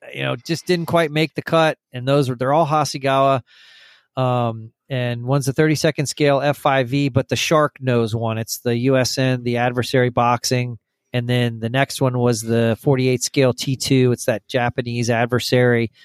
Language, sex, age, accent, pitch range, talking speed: English, male, 40-59, American, 115-135 Hz, 170 wpm